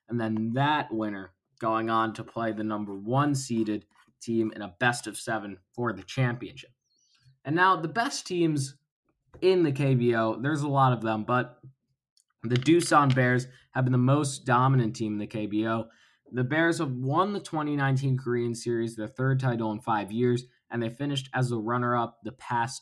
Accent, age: American, 20-39